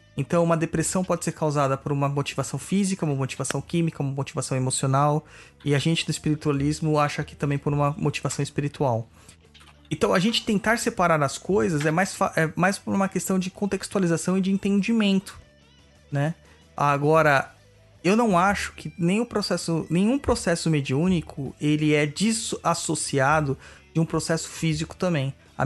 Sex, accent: male, Brazilian